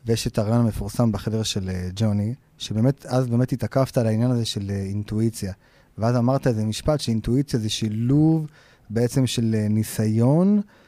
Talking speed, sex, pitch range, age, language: 145 wpm, male, 110-135 Hz, 30-49, Hebrew